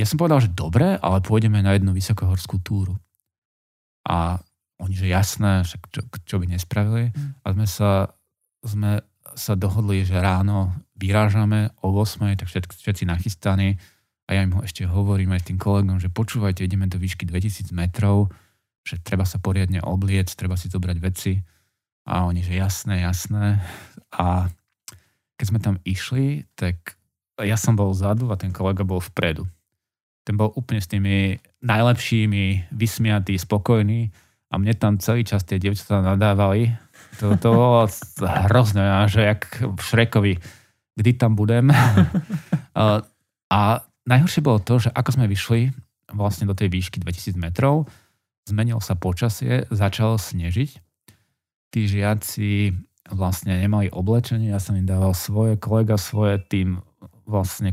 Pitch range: 95-110 Hz